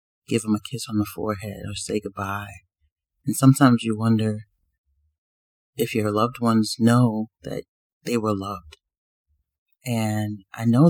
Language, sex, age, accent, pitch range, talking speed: English, male, 30-49, American, 95-115 Hz, 145 wpm